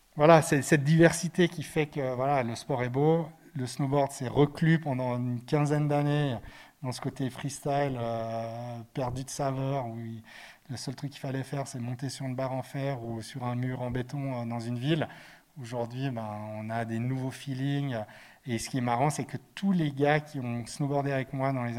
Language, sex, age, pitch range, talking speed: French, male, 40-59, 125-145 Hz, 210 wpm